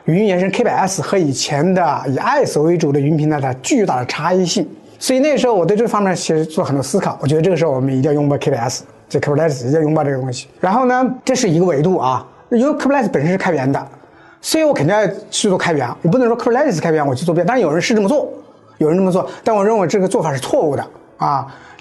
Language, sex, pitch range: Chinese, male, 150-200 Hz